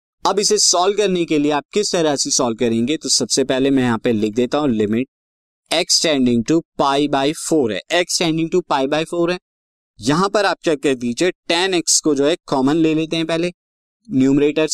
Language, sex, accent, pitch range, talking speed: Hindi, male, native, 125-175 Hz, 215 wpm